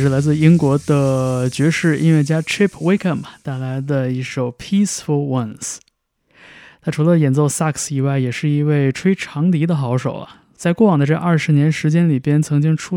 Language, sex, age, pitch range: Chinese, male, 20-39, 130-160 Hz